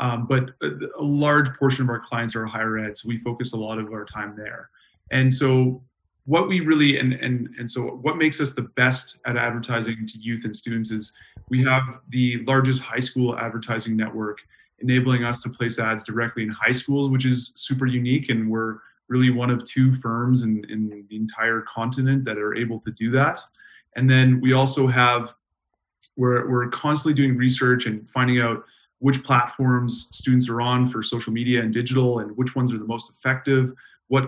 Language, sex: English, male